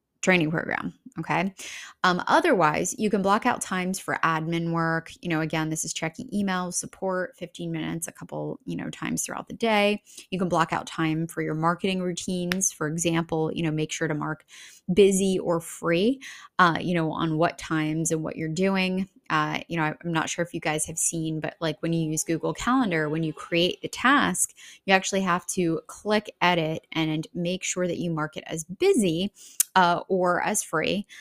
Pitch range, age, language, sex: 160-190 Hz, 20-39, English, female